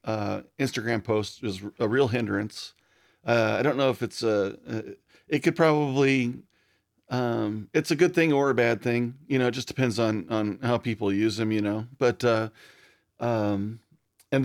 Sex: male